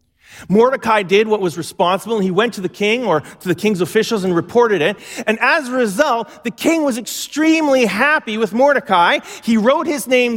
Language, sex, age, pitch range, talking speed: English, male, 40-59, 180-245 Hz, 195 wpm